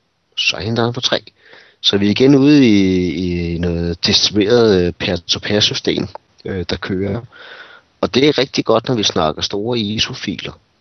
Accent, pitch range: native, 90-115 Hz